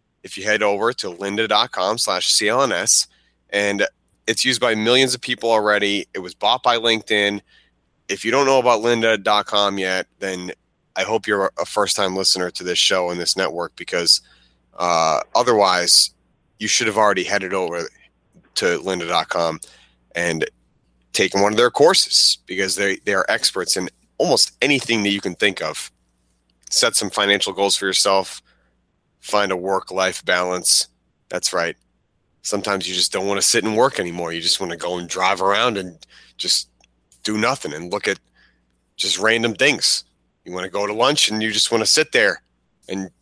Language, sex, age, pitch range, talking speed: English, male, 30-49, 85-110 Hz, 175 wpm